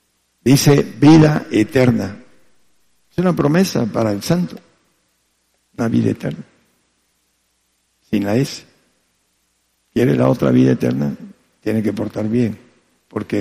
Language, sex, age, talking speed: Spanish, male, 60-79, 110 wpm